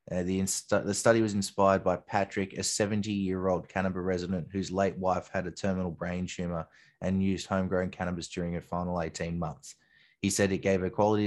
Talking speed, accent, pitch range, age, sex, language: 185 wpm, Australian, 90-100 Hz, 20-39, male, English